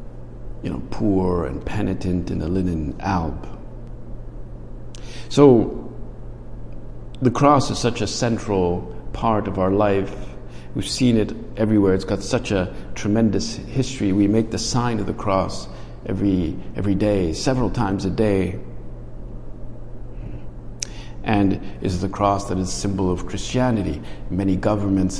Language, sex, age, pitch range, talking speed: English, male, 50-69, 95-110 Hz, 135 wpm